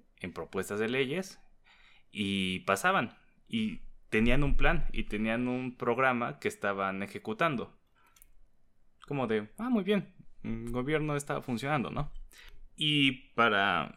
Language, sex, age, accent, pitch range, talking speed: Spanish, male, 20-39, Mexican, 95-130 Hz, 125 wpm